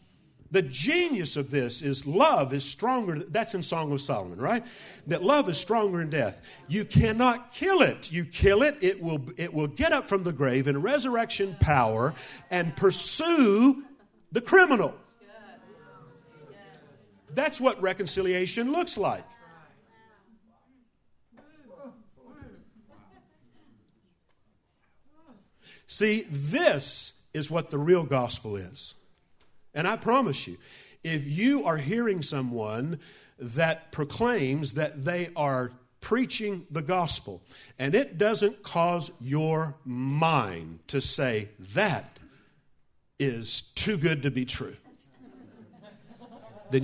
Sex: male